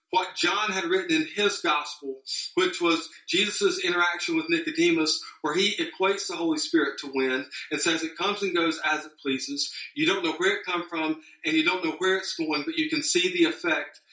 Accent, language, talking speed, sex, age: American, English, 210 wpm, male, 40-59